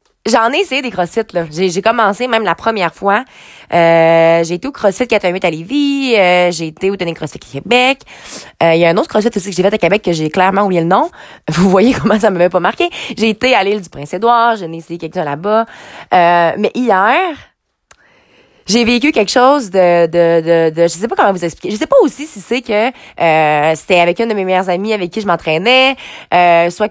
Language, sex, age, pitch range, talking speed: French, female, 20-39, 175-230 Hz, 230 wpm